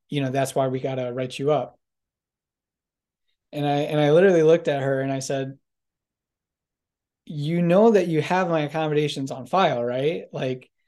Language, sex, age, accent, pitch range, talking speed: English, male, 20-39, American, 130-160 Hz, 175 wpm